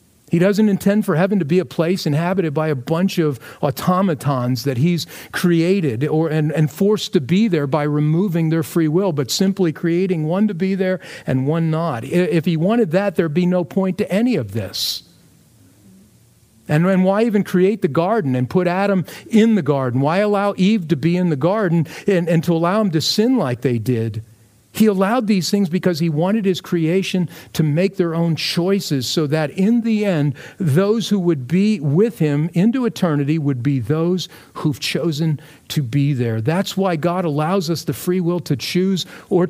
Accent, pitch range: American, 140-185 Hz